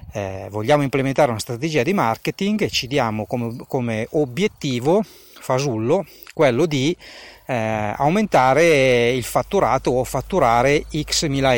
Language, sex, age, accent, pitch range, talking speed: Italian, male, 30-49, native, 110-145 Hz, 125 wpm